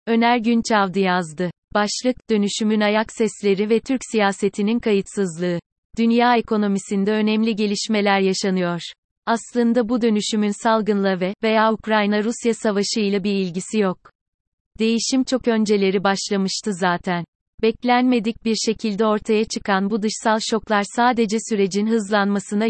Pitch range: 195-225 Hz